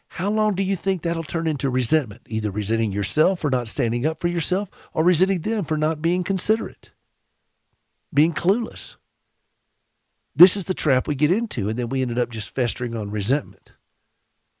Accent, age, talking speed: American, 50-69, 175 wpm